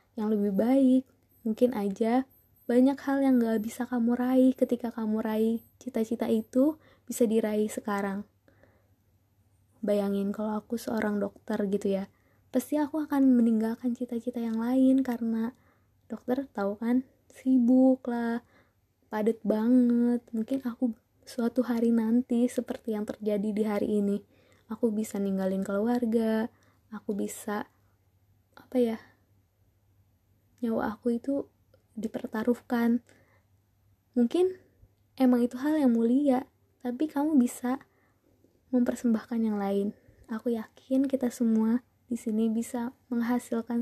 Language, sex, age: Indonesian, female, 20-39